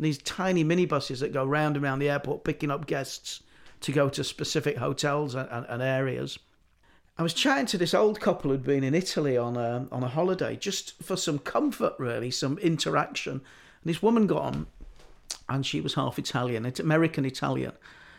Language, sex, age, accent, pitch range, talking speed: English, male, 50-69, British, 130-170 Hz, 190 wpm